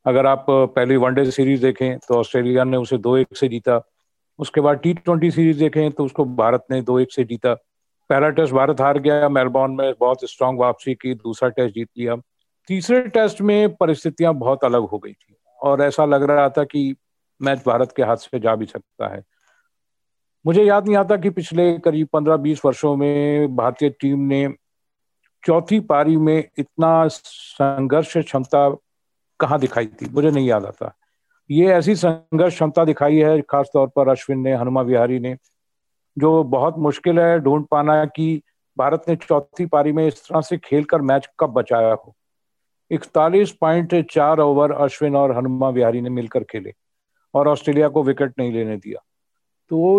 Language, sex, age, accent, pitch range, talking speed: Hindi, male, 50-69, native, 130-165 Hz, 115 wpm